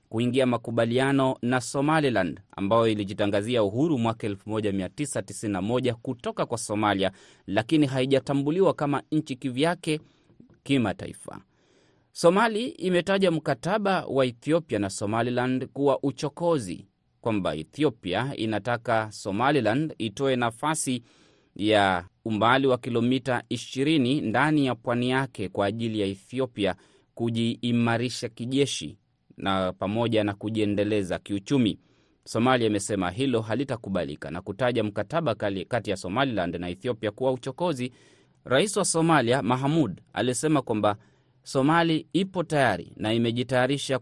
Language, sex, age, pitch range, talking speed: Swahili, male, 30-49, 105-135 Hz, 105 wpm